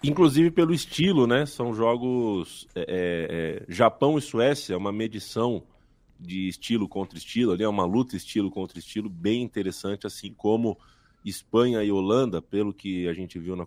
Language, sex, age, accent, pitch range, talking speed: Portuguese, male, 20-39, Brazilian, 90-110 Hz, 165 wpm